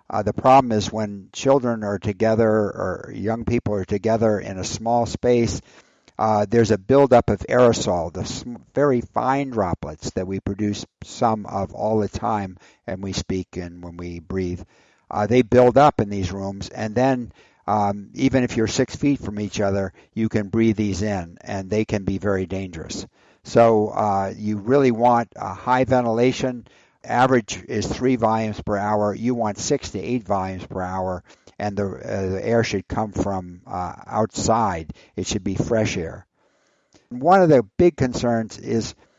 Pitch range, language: 95-120 Hz, English